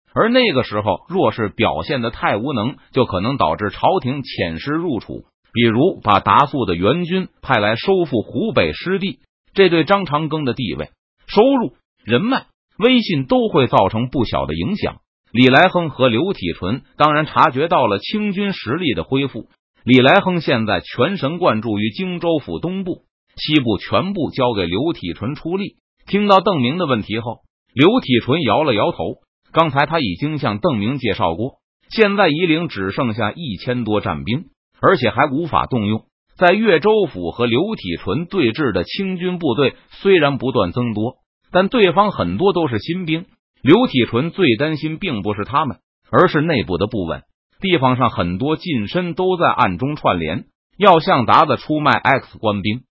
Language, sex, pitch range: Chinese, male, 115-185 Hz